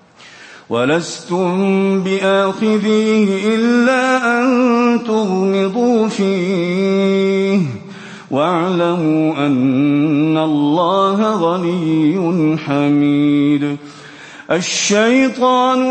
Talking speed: 45 wpm